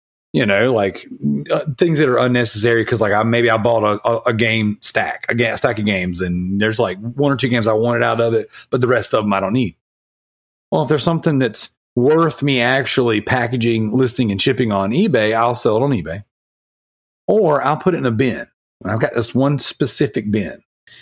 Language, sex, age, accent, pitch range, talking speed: English, male, 40-59, American, 110-135 Hz, 220 wpm